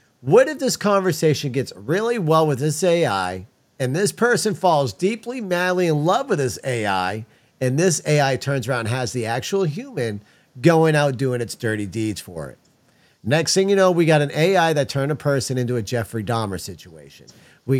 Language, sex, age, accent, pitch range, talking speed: English, male, 50-69, American, 125-155 Hz, 190 wpm